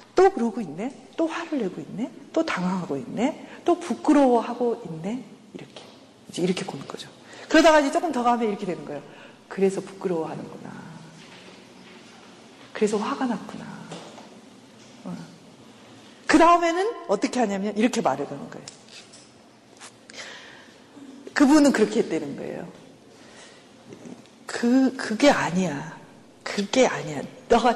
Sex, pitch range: female, 205-290 Hz